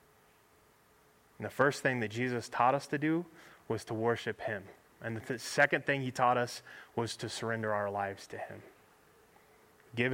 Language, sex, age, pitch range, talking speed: English, male, 20-39, 110-135 Hz, 170 wpm